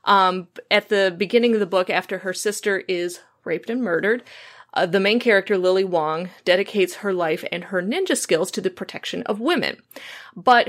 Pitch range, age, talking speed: 180-225 Hz, 30-49, 185 wpm